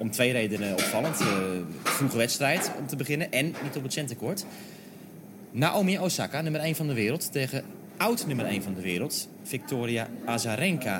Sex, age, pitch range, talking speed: male, 30-49, 120-190 Hz, 170 wpm